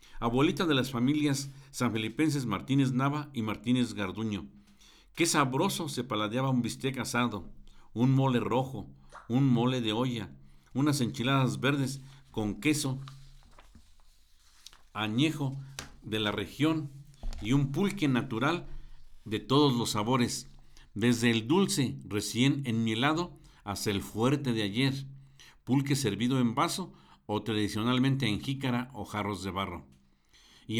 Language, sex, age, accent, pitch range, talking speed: Spanish, male, 50-69, Mexican, 105-135 Hz, 125 wpm